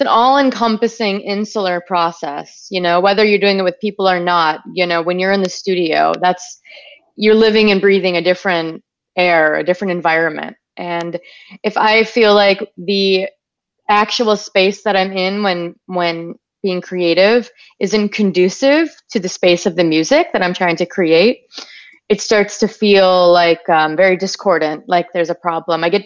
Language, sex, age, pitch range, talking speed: English, female, 30-49, 175-215 Hz, 170 wpm